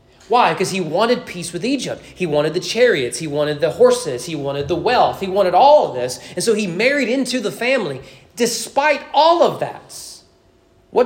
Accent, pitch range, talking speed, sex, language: American, 155-200 Hz, 195 wpm, male, English